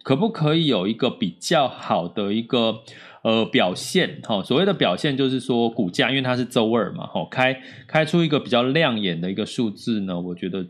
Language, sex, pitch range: Chinese, male, 110-155 Hz